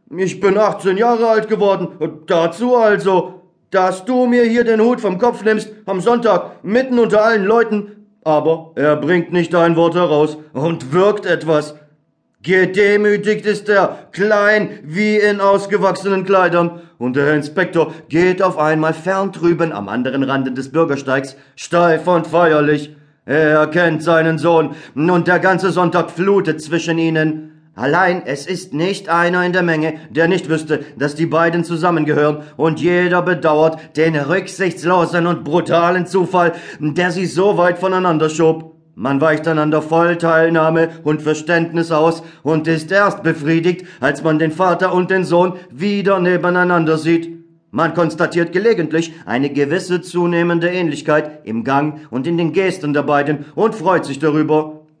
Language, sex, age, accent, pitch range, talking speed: German, male, 40-59, German, 155-185 Hz, 150 wpm